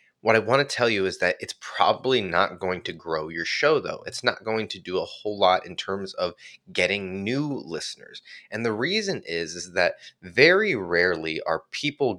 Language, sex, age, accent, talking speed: English, male, 20-39, American, 200 wpm